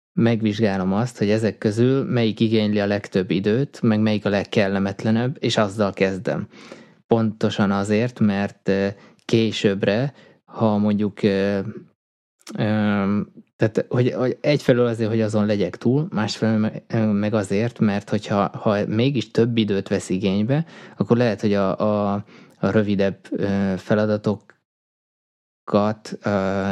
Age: 20-39